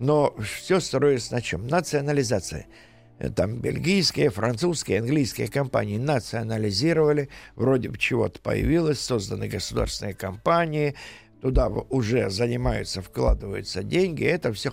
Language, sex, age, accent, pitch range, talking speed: Russian, male, 50-69, native, 110-150 Hz, 105 wpm